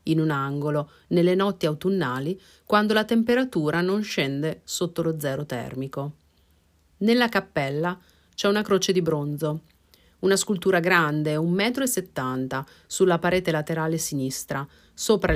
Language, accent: Italian, native